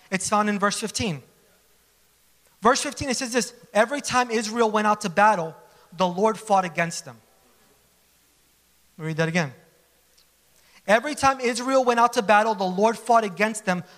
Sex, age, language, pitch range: male, 30-49, English, 160-265 Hz